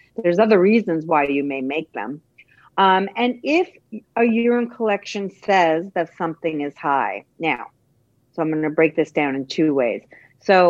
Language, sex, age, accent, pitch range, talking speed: English, female, 50-69, American, 160-200 Hz, 175 wpm